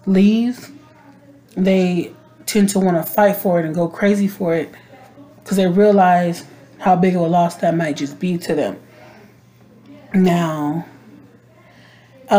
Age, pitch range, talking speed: 30-49, 175-205 Hz, 145 wpm